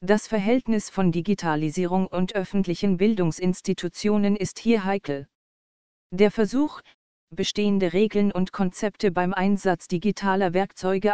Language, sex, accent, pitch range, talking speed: German, female, German, 180-210 Hz, 110 wpm